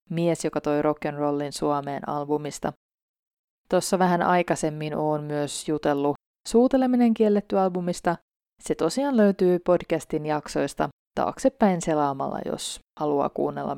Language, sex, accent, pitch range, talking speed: Finnish, female, native, 145-180 Hz, 110 wpm